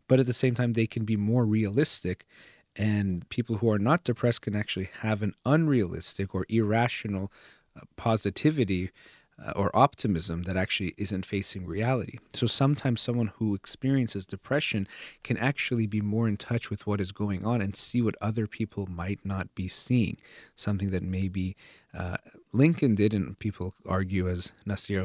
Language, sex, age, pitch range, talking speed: English, male, 30-49, 95-115 Hz, 165 wpm